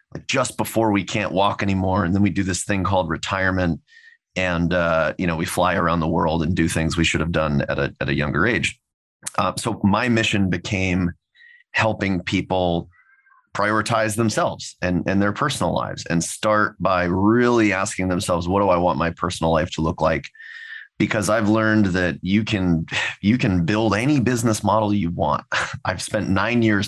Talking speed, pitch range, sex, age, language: 190 wpm, 85-105 Hz, male, 30-49, English